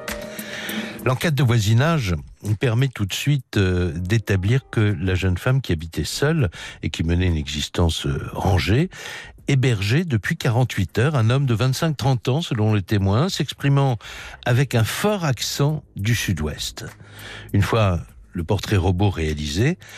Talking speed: 140 wpm